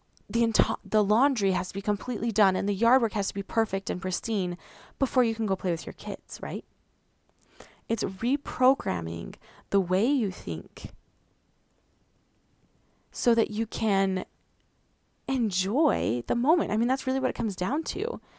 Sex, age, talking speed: female, 20-39, 165 wpm